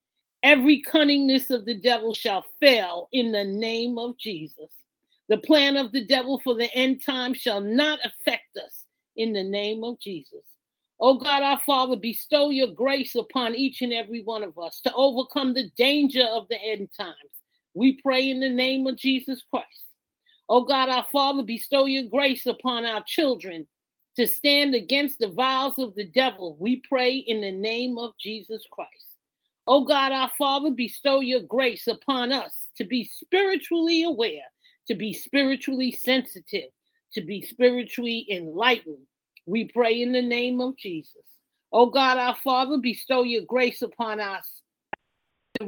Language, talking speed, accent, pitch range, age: English, 165 wpm, American, 225-270 Hz, 40-59